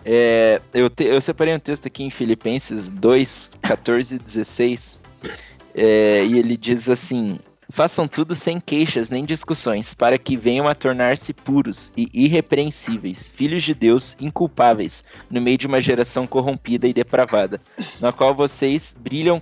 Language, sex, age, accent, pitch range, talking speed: Portuguese, male, 20-39, Brazilian, 115-145 Hz, 140 wpm